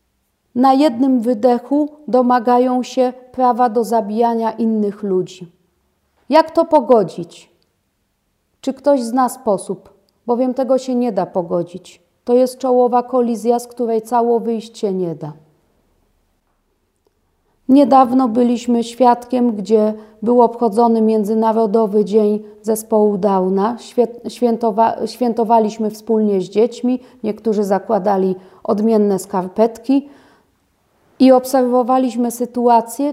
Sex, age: female, 40-59